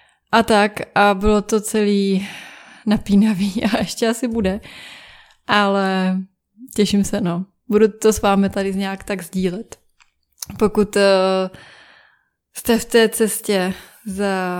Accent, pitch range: native, 185-210 Hz